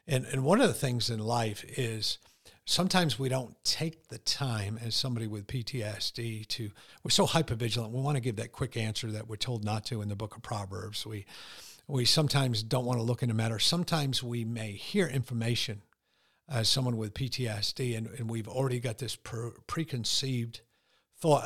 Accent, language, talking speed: American, English, 185 wpm